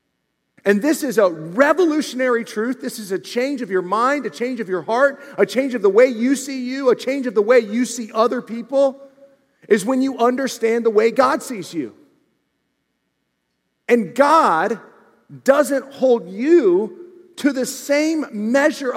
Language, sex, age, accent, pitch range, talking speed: English, male, 40-59, American, 235-275 Hz, 170 wpm